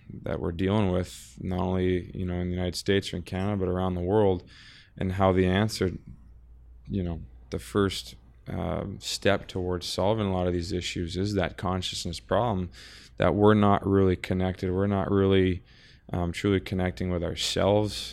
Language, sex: English, male